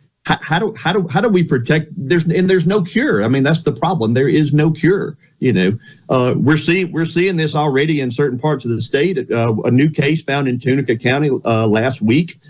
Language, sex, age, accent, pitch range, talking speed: English, male, 50-69, American, 125-155 Hz, 235 wpm